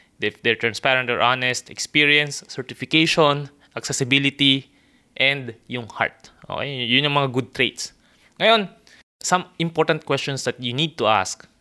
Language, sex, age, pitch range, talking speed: Filipino, male, 20-39, 115-140 Hz, 135 wpm